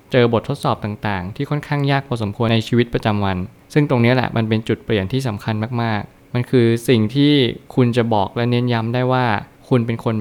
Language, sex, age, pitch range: Thai, male, 20-39, 110-130 Hz